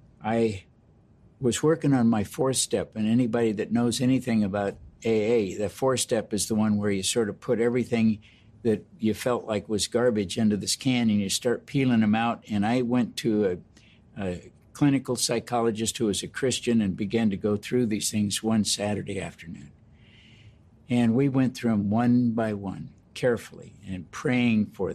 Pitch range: 105-125 Hz